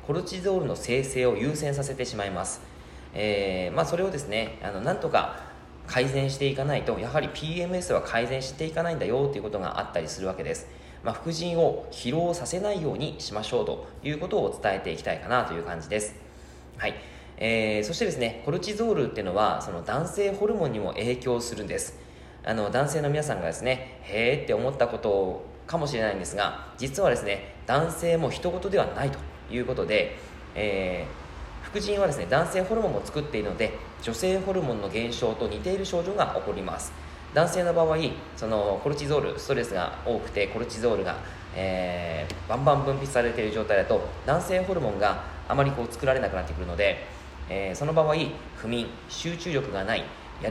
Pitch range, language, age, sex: 100-165 Hz, Japanese, 20-39, male